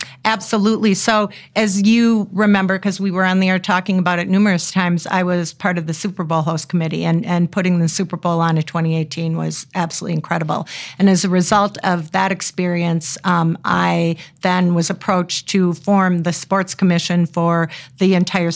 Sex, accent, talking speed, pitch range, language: female, American, 185 wpm, 170-195 Hz, English